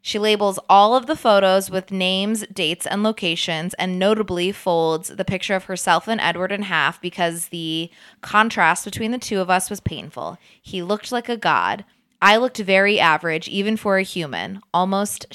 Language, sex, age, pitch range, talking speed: English, female, 20-39, 175-210 Hz, 180 wpm